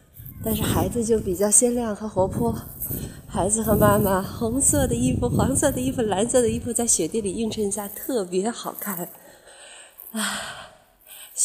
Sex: female